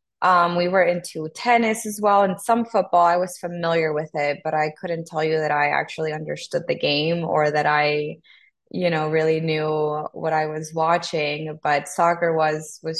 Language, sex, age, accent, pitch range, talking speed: English, female, 20-39, American, 155-170 Hz, 190 wpm